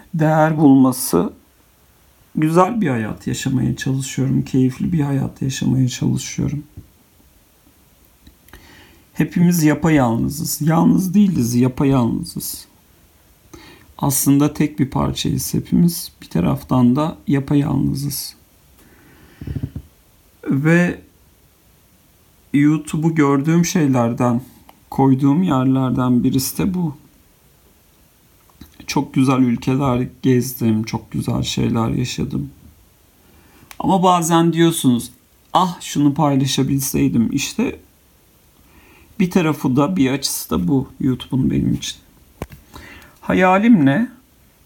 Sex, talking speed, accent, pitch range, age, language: male, 85 wpm, native, 105-155 Hz, 50-69, Turkish